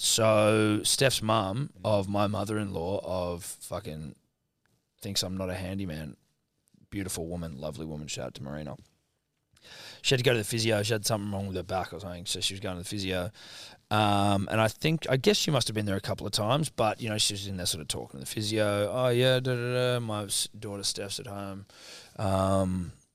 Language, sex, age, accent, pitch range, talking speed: English, male, 20-39, Australian, 90-110 Hz, 205 wpm